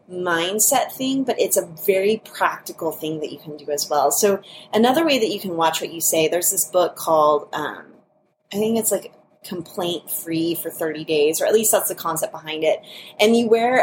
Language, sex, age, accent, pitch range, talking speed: English, female, 20-39, American, 155-205 Hz, 215 wpm